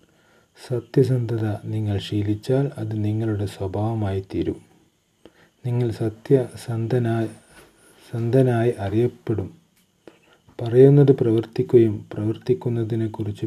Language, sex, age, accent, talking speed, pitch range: Malayalam, male, 30-49, native, 65 wpm, 100-115 Hz